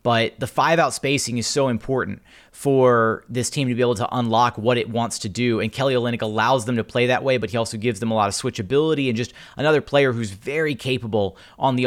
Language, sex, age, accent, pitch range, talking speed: English, male, 30-49, American, 115-135 Hz, 240 wpm